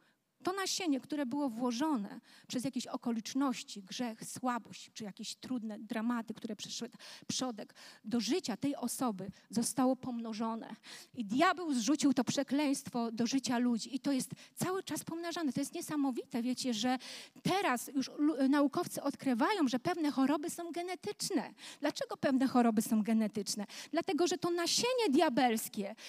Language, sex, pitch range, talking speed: Polish, female, 240-320 Hz, 140 wpm